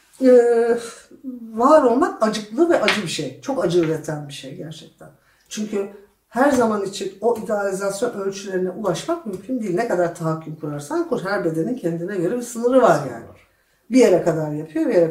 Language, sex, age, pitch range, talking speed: Turkish, female, 60-79, 165-235 Hz, 170 wpm